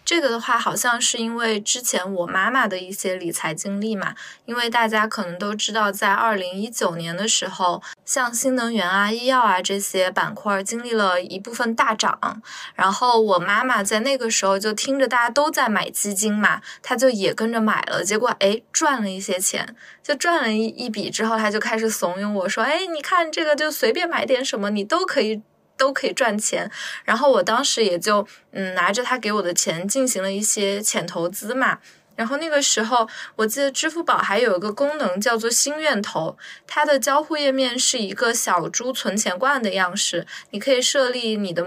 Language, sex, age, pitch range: Chinese, female, 20-39, 200-255 Hz